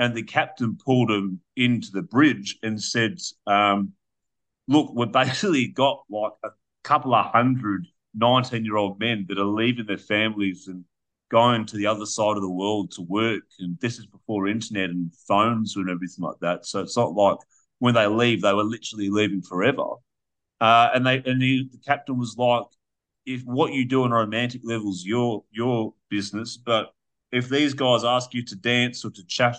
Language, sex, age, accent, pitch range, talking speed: English, male, 30-49, Australian, 100-125 Hz, 185 wpm